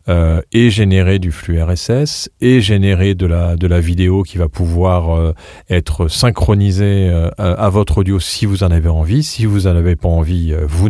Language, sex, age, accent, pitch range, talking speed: French, male, 40-59, French, 85-105 Hz, 200 wpm